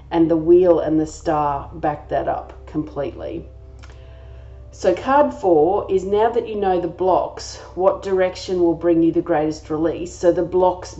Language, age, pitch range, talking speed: English, 40-59, 155-170 Hz, 170 wpm